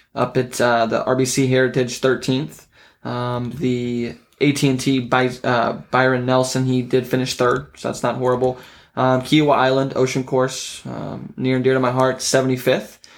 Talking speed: 160 wpm